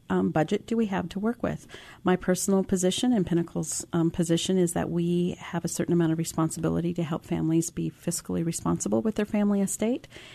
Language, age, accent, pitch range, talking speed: English, 40-59, American, 165-195 Hz, 195 wpm